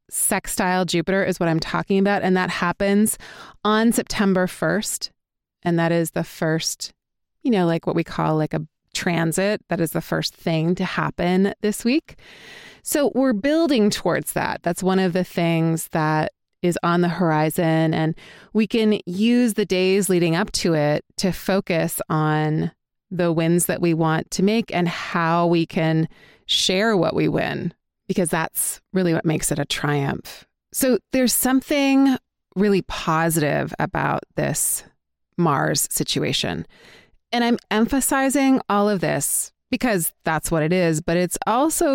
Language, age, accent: English, 30-49, American